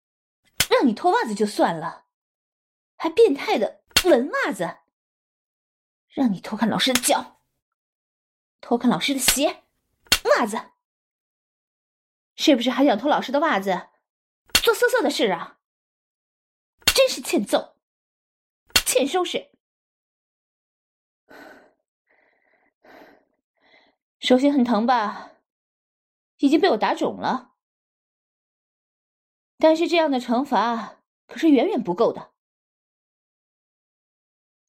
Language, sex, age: Chinese, female, 20-39